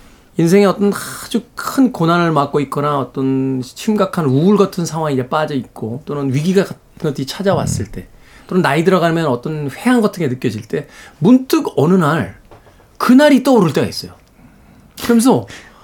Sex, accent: male, native